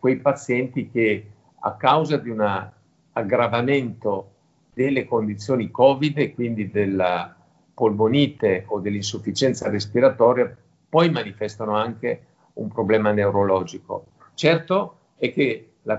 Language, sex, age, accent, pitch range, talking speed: Italian, male, 50-69, native, 105-140 Hz, 100 wpm